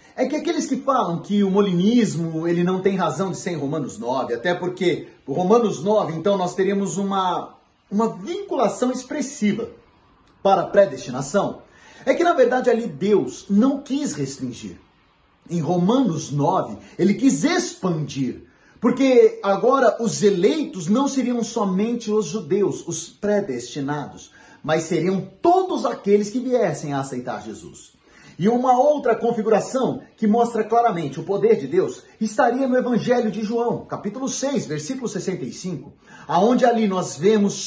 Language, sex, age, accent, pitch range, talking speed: Portuguese, male, 40-59, Brazilian, 170-230 Hz, 145 wpm